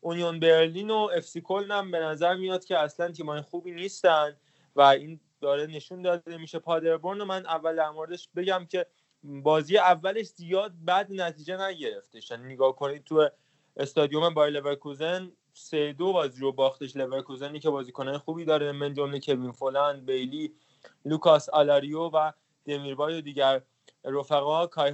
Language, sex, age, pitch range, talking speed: Persian, male, 20-39, 145-180 Hz, 150 wpm